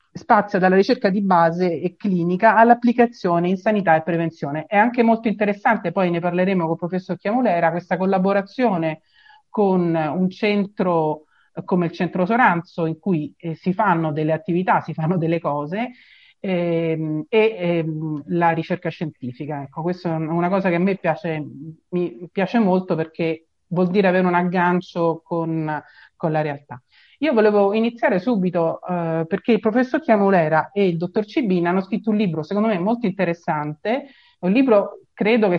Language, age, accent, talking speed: Italian, 40-59, native, 160 wpm